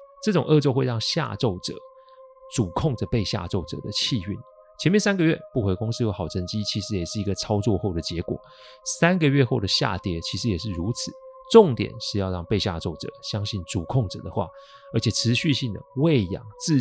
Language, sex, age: Chinese, male, 30-49